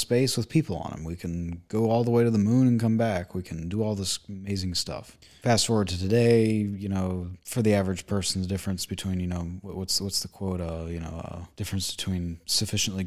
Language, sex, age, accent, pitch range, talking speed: English, male, 20-39, American, 90-105 Hz, 220 wpm